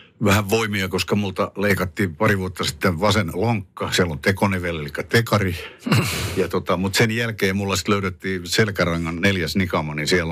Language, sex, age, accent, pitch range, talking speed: Finnish, male, 60-79, native, 85-105 Hz, 150 wpm